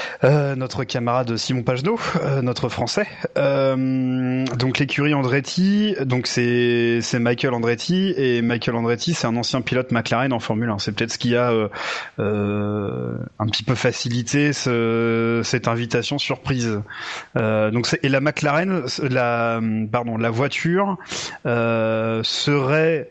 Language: French